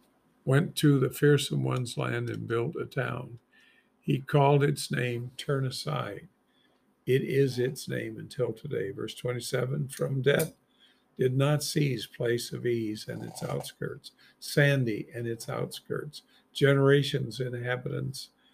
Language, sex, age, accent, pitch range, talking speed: English, male, 50-69, American, 120-150 Hz, 135 wpm